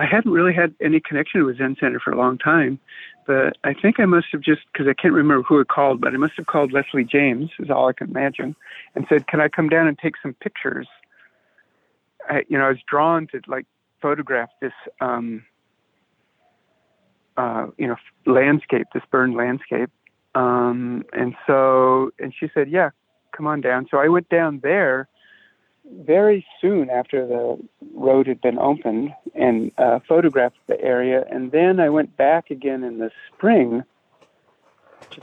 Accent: American